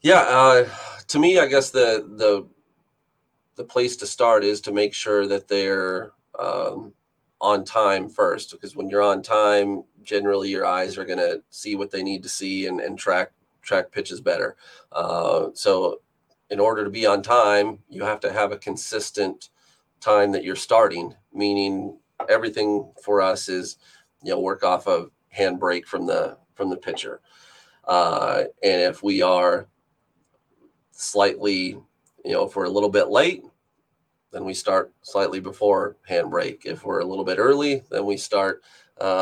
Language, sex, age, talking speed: English, male, 30-49, 165 wpm